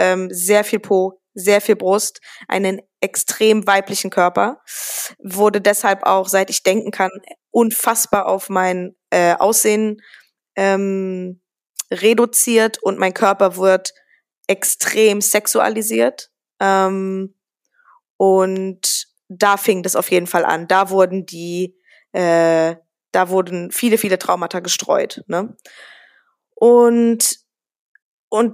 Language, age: German, 20-39